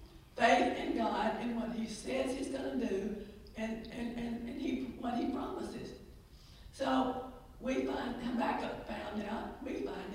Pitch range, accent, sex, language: 210-245 Hz, American, female, English